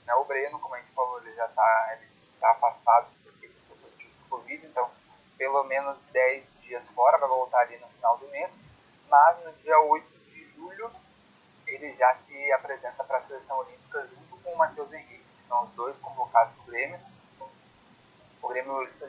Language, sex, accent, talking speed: Portuguese, male, Brazilian, 175 wpm